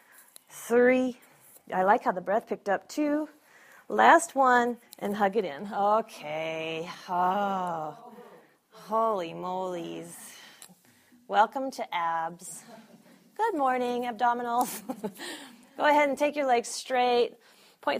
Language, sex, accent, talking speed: English, female, American, 110 wpm